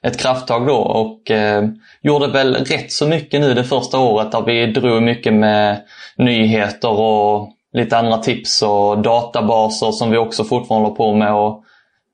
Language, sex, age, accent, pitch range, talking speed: English, male, 20-39, Swedish, 110-130 Hz, 170 wpm